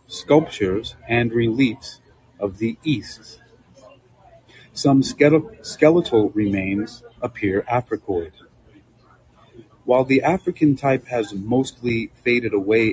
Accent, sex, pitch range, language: American, male, 110-135 Hz, English